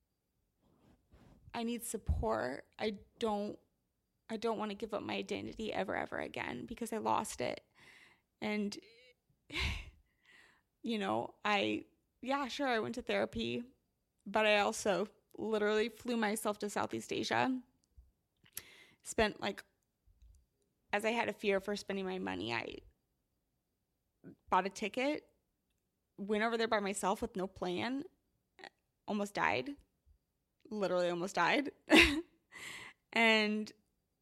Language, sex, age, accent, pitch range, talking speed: English, female, 20-39, American, 200-260 Hz, 120 wpm